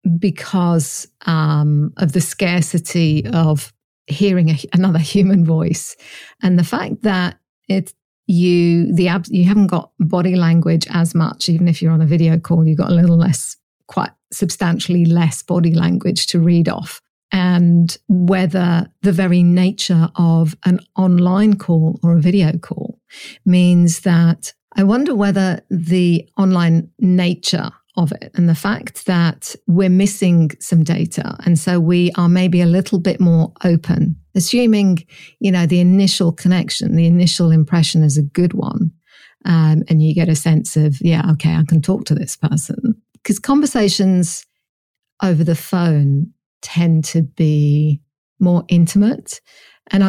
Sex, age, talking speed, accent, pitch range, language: female, 50-69, 150 wpm, British, 165-190 Hz, English